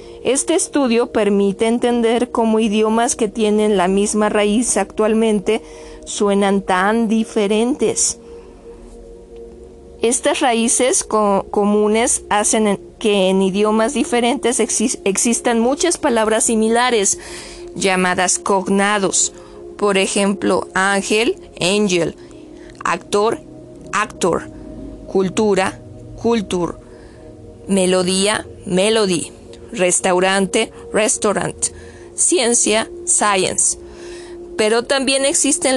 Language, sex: Spanish, female